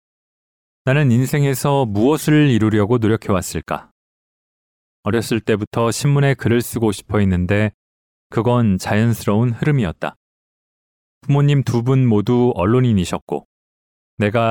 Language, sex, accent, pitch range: Korean, male, native, 95-125 Hz